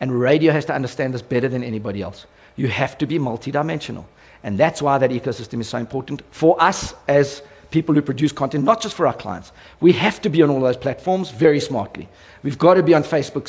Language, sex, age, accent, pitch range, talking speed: English, male, 50-69, South African, 130-175 Hz, 225 wpm